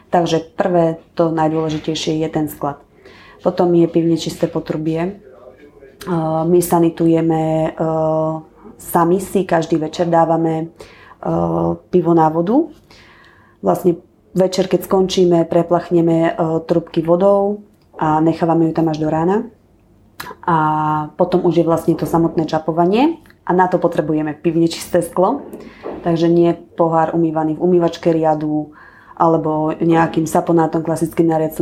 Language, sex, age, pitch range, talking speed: Slovak, female, 20-39, 160-175 Hz, 120 wpm